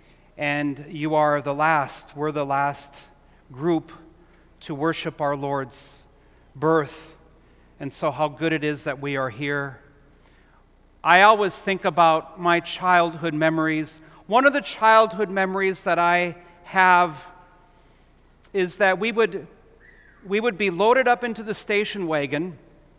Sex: male